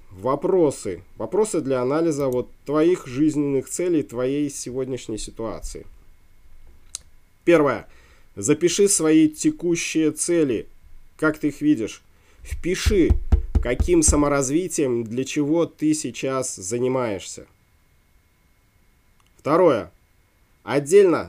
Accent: native